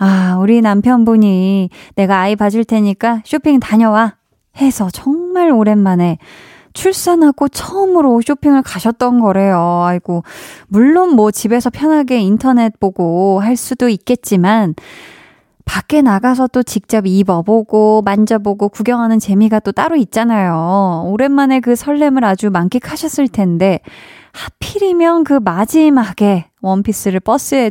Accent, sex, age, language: native, female, 20-39, Korean